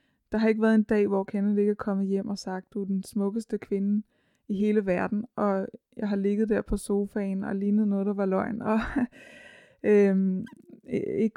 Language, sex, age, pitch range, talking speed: Danish, female, 20-39, 190-220 Hz, 195 wpm